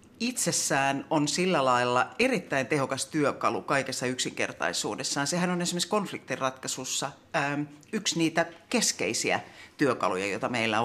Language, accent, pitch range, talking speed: Finnish, native, 130-175 Hz, 105 wpm